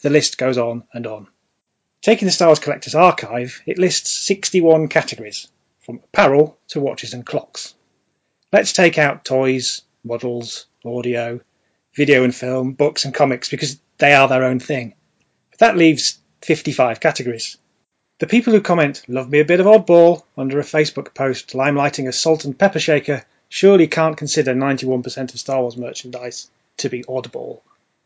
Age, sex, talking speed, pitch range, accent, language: 30-49, male, 160 wpm, 130-170 Hz, British, English